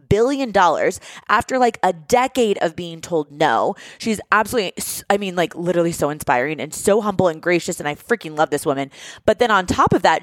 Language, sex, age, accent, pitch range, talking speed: English, female, 20-39, American, 165-230 Hz, 205 wpm